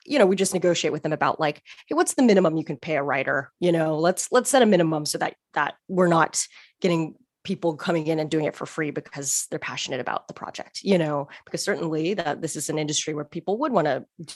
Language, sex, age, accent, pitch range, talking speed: English, female, 20-39, American, 155-190 Hz, 245 wpm